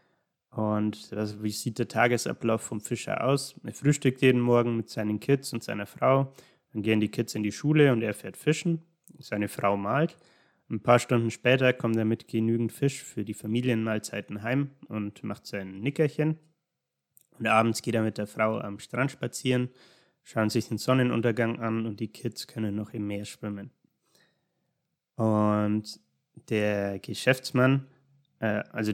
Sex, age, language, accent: male, 20-39, German, German